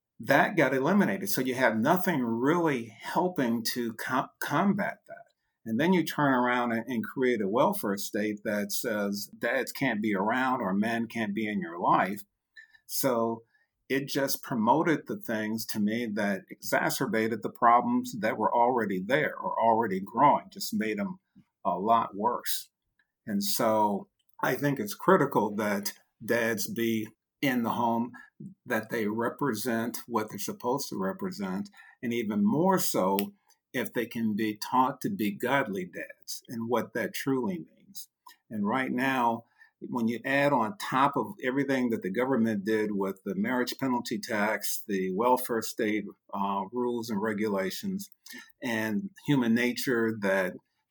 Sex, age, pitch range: male, 50-69, 110-160 Hz